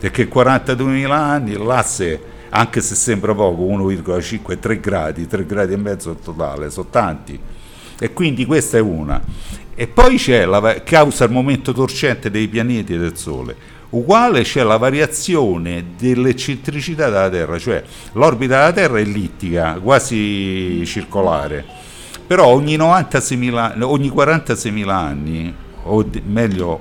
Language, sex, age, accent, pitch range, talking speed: Italian, male, 60-79, native, 90-130 Hz, 130 wpm